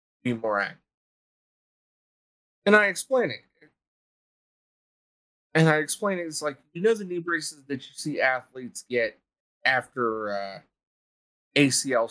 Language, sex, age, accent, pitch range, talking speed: English, male, 30-49, American, 120-170 Hz, 130 wpm